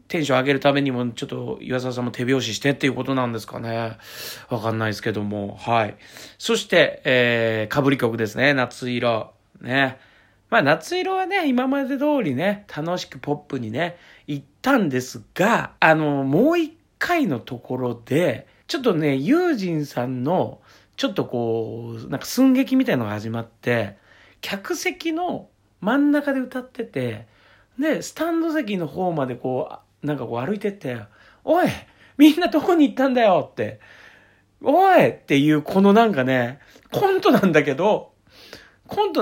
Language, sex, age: Japanese, male, 40-59